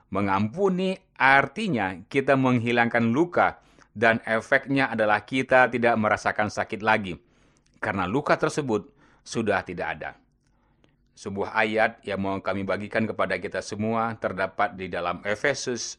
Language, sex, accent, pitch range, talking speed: Indonesian, male, native, 105-130 Hz, 120 wpm